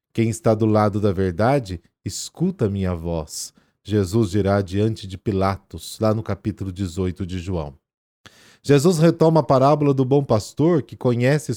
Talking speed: 155 wpm